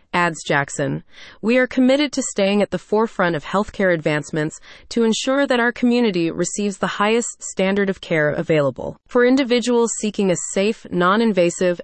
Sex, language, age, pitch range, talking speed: female, English, 30-49, 175-230 Hz, 160 wpm